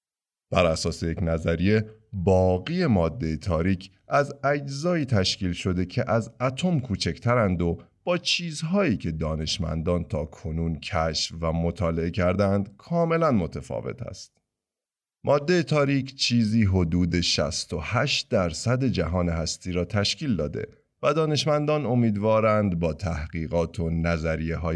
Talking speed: 115 wpm